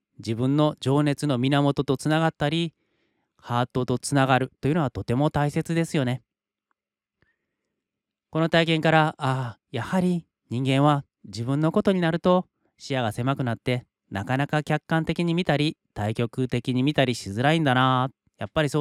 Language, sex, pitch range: Japanese, male, 120-160 Hz